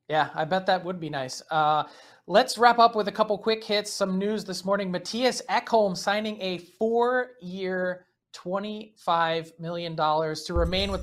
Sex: male